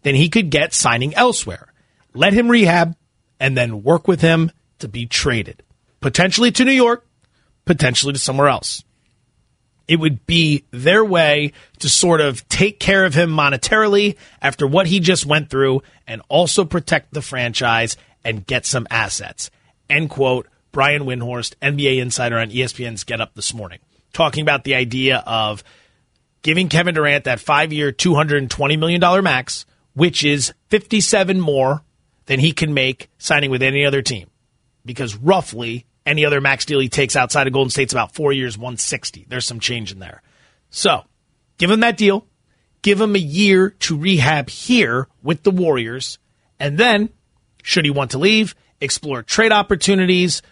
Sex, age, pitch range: male, 30-49, 125-175 Hz